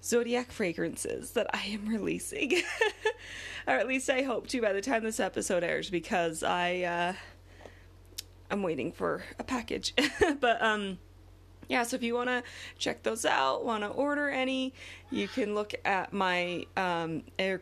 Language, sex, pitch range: English, female, 175-240 Hz